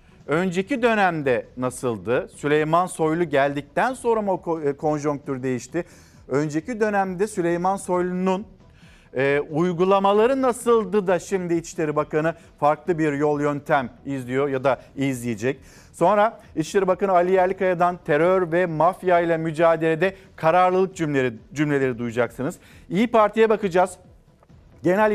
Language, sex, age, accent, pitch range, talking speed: Turkish, male, 50-69, native, 145-190 Hz, 110 wpm